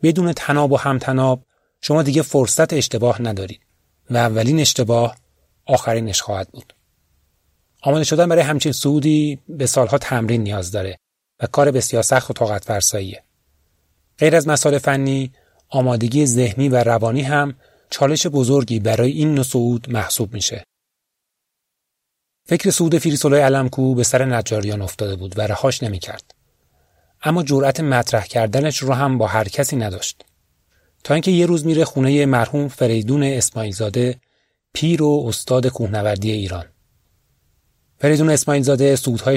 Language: Persian